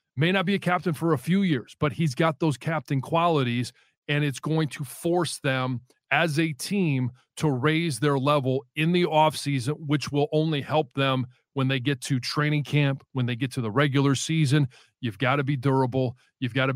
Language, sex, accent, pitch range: English, male, American, 130-155 Hz